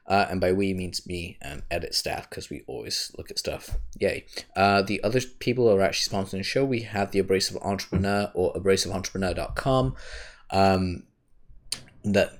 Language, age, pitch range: English, 20-39, 90-110 Hz